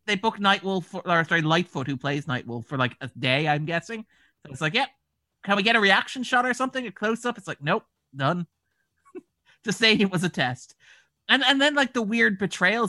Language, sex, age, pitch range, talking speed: English, male, 30-49, 135-195 Hz, 225 wpm